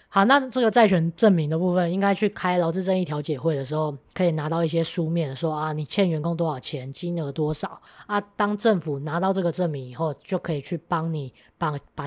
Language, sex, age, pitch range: Chinese, female, 20-39, 150-185 Hz